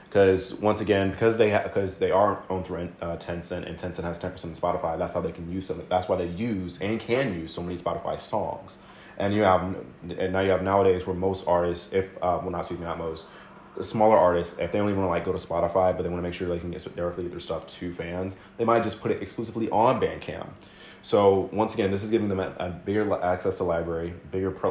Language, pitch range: English, 85-100 Hz